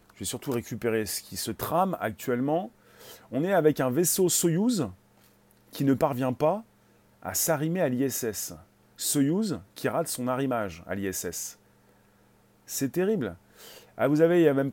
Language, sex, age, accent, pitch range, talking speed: French, male, 30-49, French, 120-160 Hz, 155 wpm